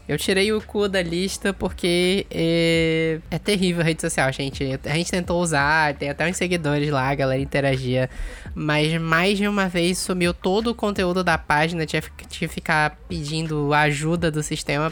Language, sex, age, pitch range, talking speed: Portuguese, female, 10-29, 150-185 Hz, 175 wpm